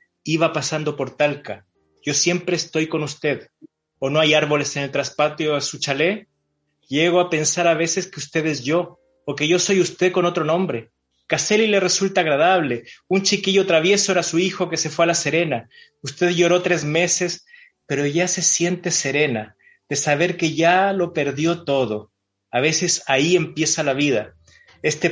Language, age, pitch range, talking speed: Spanish, 30-49, 145-175 Hz, 180 wpm